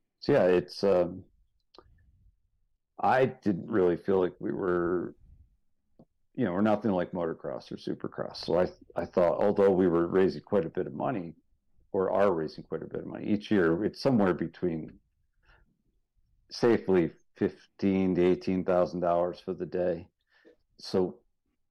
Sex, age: male, 60-79